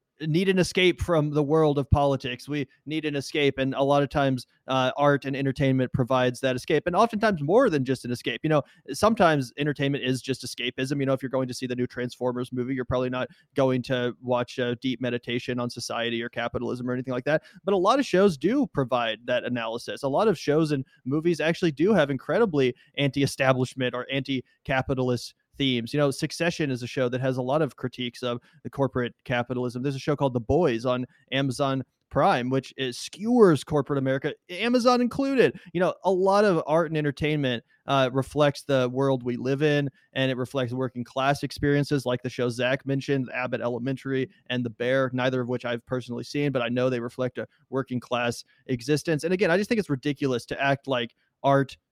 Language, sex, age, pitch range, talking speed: English, male, 30-49, 125-150 Hz, 210 wpm